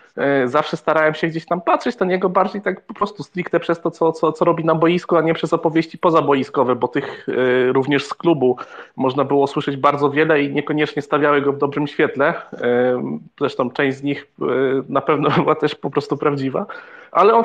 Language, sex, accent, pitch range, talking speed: Polish, male, native, 135-165 Hz, 195 wpm